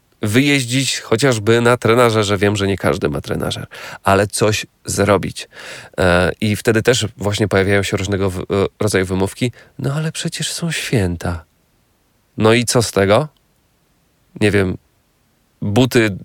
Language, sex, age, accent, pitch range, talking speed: Polish, male, 40-59, native, 100-130 Hz, 135 wpm